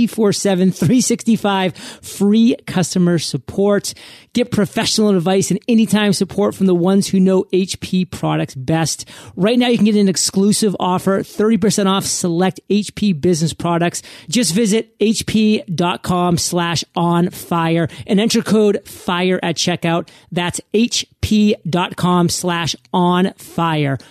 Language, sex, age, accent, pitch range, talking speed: English, male, 30-49, American, 165-205 Hz, 115 wpm